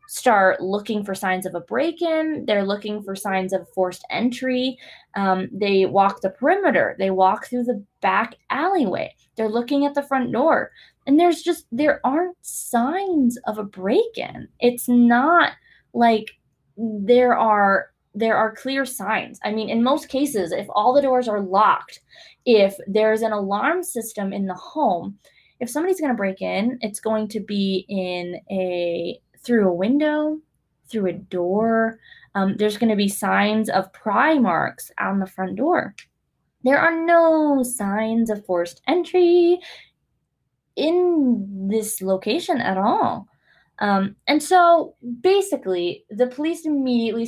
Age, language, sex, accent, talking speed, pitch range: 20-39, English, female, American, 150 wpm, 195-275 Hz